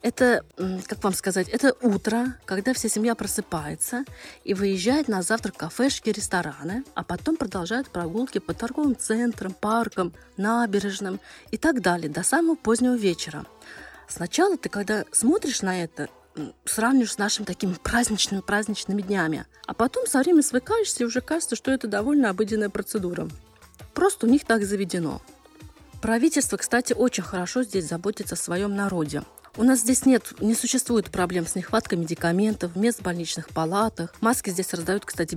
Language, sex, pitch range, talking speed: Russian, female, 185-235 Hz, 155 wpm